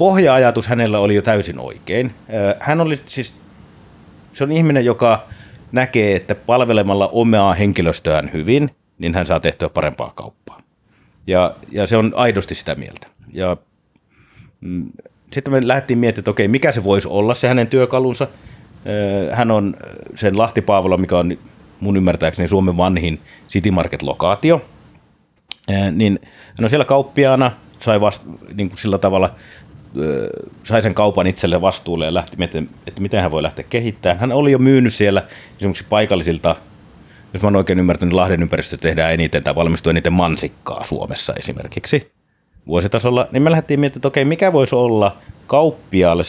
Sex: male